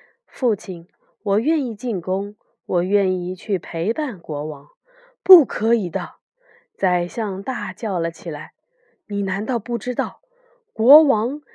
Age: 20-39